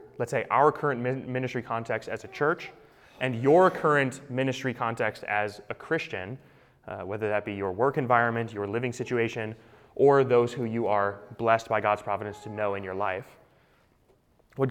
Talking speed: 170 wpm